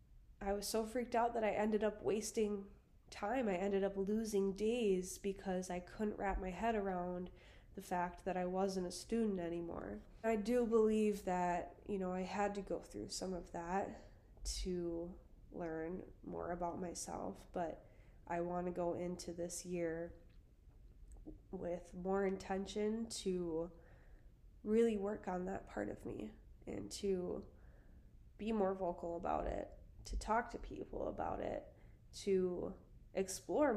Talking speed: 150 wpm